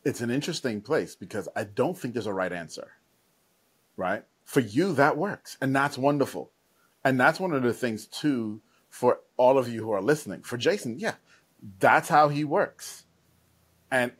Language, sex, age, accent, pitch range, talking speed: English, male, 30-49, American, 115-155 Hz, 180 wpm